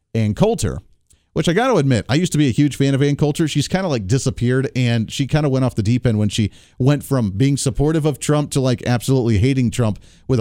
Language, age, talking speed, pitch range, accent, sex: English, 40-59, 260 wpm, 120-160 Hz, American, male